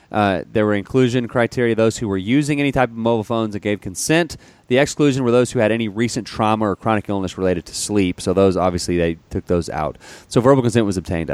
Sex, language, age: male, English, 30-49